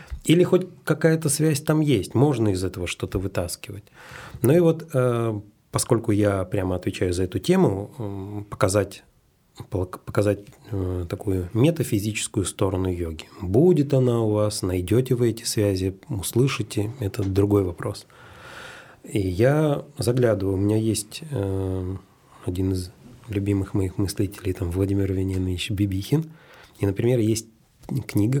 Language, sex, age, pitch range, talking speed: Russian, male, 30-49, 95-125 Hz, 125 wpm